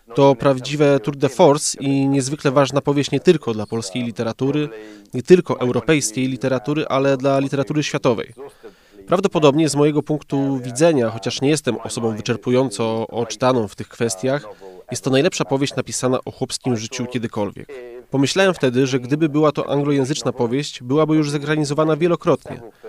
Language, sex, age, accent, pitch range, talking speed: Polish, male, 20-39, native, 120-150 Hz, 150 wpm